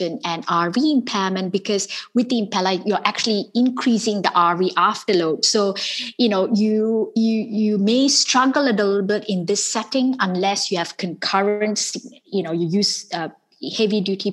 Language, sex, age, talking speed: English, female, 20-39, 155 wpm